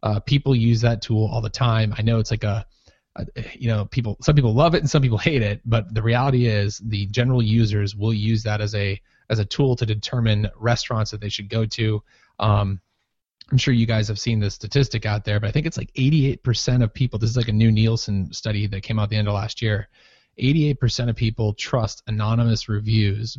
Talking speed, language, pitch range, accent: 230 wpm, English, 105-120 Hz, American